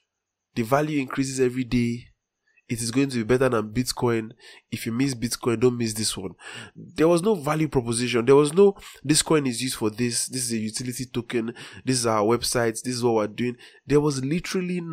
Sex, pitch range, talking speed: male, 115-150 Hz, 205 wpm